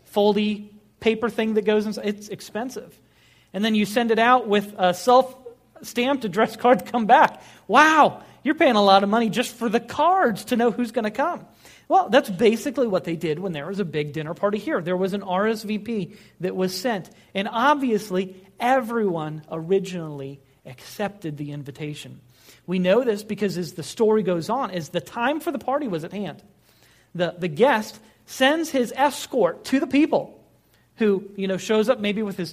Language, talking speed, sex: English, 190 wpm, male